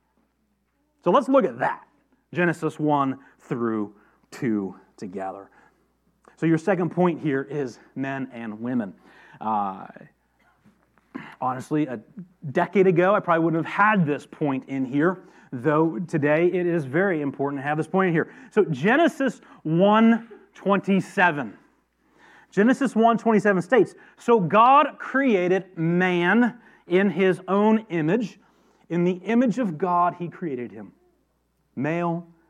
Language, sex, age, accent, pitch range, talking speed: English, male, 30-49, American, 140-200 Hz, 125 wpm